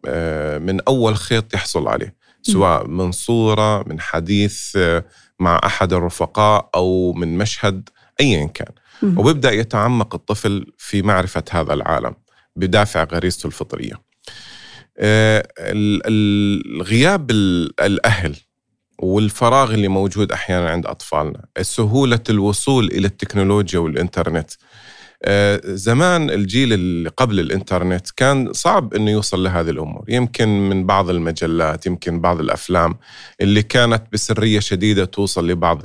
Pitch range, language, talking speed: 90-110 Hz, Arabic, 110 wpm